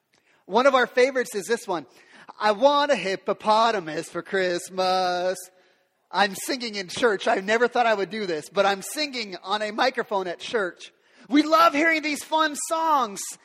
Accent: American